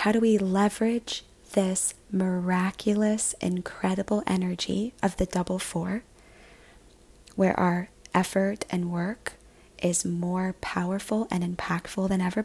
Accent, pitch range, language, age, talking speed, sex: American, 135-195 Hz, English, 20-39, 115 wpm, female